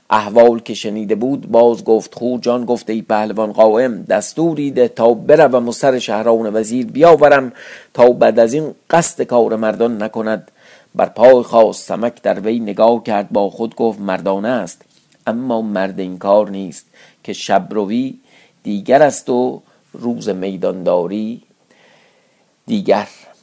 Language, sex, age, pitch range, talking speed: Persian, male, 50-69, 105-135 Hz, 135 wpm